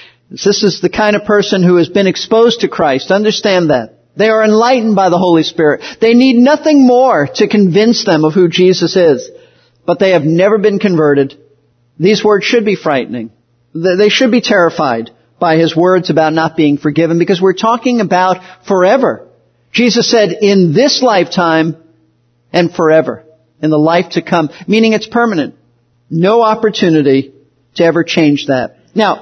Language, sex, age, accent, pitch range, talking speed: English, male, 50-69, American, 160-210 Hz, 165 wpm